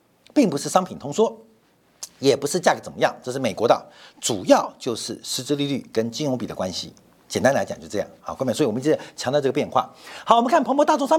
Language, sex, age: Chinese, male, 50-69